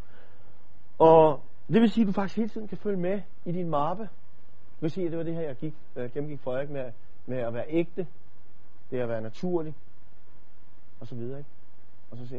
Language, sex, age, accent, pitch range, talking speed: Danish, male, 40-59, native, 100-155 Hz, 220 wpm